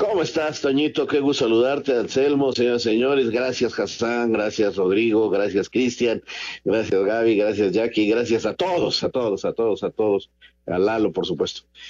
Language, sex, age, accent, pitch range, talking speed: Spanish, male, 50-69, Mexican, 115-155 Hz, 160 wpm